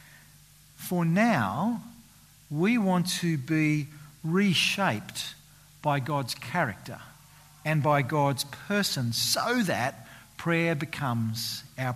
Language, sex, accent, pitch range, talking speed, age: English, male, Australian, 135-195 Hz, 95 wpm, 50-69